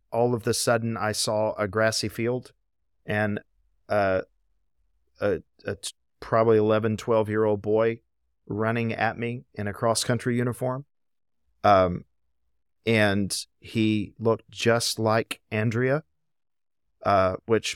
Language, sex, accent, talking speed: English, male, American, 110 wpm